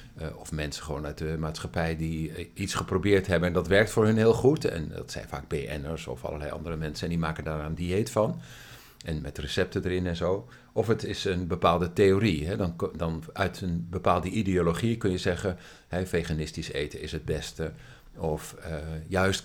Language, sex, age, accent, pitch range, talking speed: Dutch, male, 50-69, Dutch, 85-105 Hz, 185 wpm